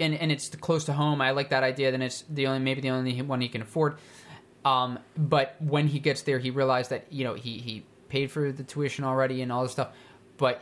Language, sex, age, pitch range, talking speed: English, male, 20-39, 125-140 Hz, 250 wpm